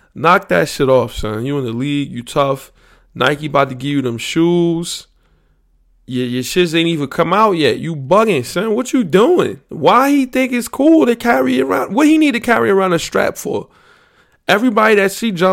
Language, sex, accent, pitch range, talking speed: English, male, American, 140-190 Hz, 205 wpm